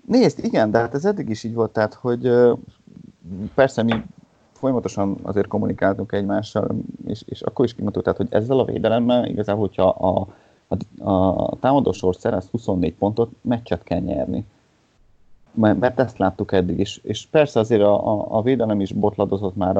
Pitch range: 95-115 Hz